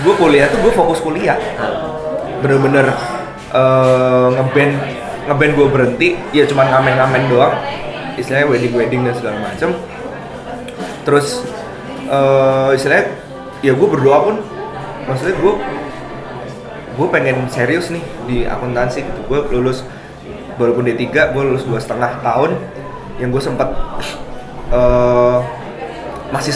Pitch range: 125-150 Hz